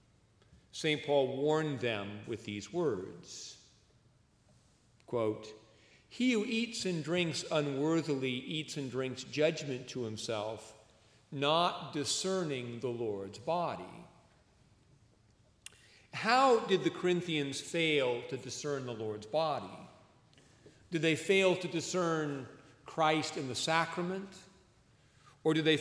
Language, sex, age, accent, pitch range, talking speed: English, male, 50-69, American, 120-160 Hz, 110 wpm